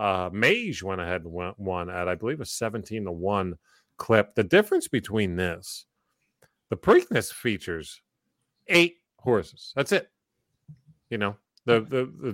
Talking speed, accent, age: 145 wpm, American, 40-59